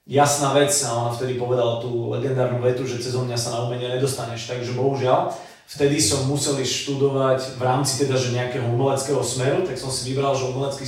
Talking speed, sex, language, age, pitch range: 180 wpm, male, Slovak, 30-49, 120-140 Hz